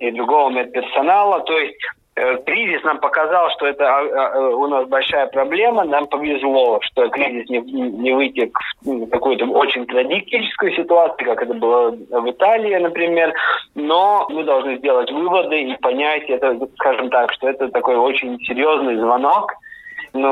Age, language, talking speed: 20-39, Russian, 150 wpm